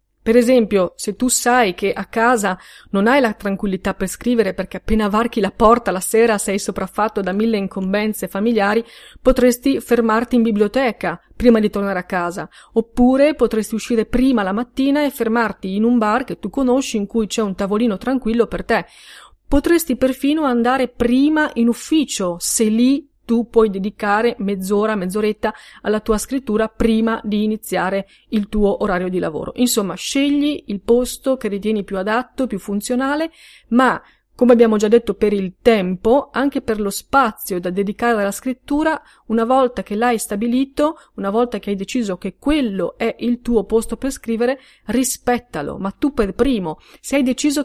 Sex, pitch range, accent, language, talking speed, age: female, 205-255 Hz, native, Italian, 170 wpm, 30-49